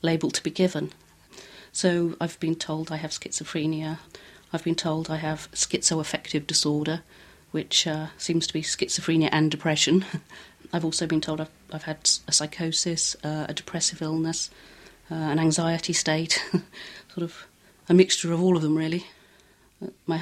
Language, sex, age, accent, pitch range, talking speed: English, female, 40-59, British, 155-175 Hz, 155 wpm